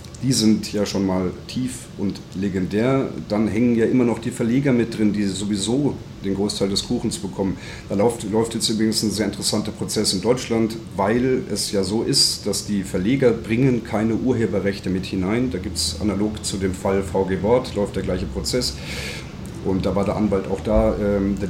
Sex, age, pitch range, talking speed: male, 40-59, 95-115 Hz, 195 wpm